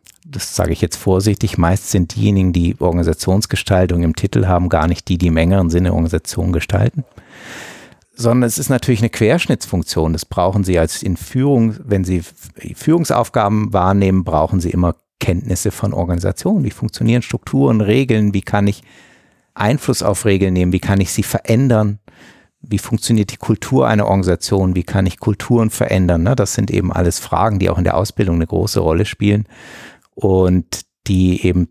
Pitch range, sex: 90-110 Hz, male